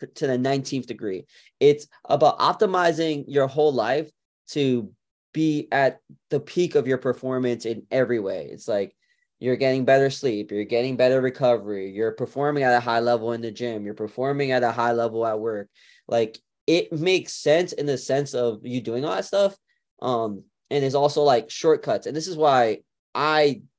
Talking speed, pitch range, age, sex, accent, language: 180 wpm, 115-140 Hz, 20-39, male, American, English